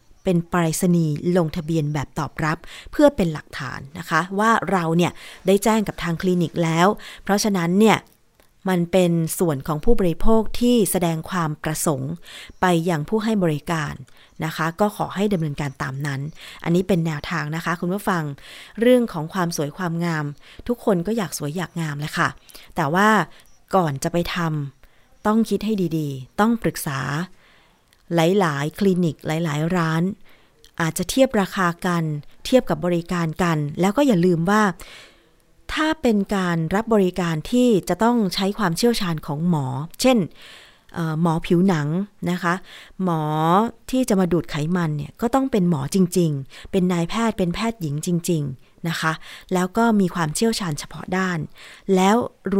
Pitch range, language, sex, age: 160-200 Hz, Thai, female, 20-39